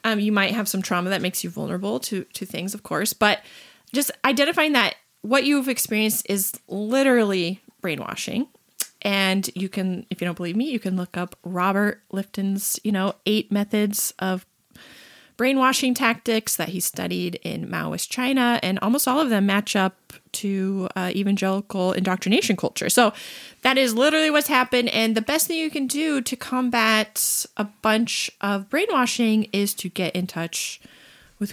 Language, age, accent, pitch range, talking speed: English, 20-39, American, 190-255 Hz, 170 wpm